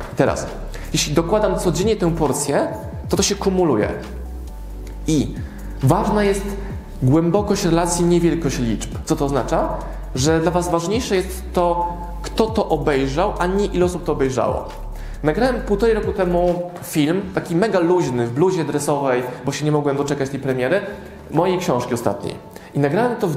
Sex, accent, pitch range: male, native, 145-185 Hz